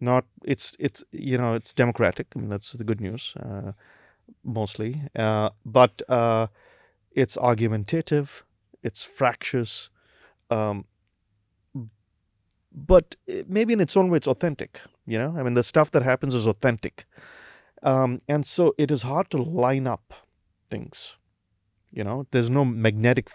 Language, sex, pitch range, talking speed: English, male, 110-150 Hz, 145 wpm